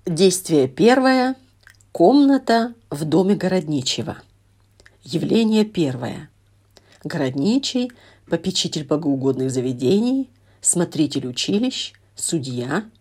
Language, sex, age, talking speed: Russian, female, 40-59, 70 wpm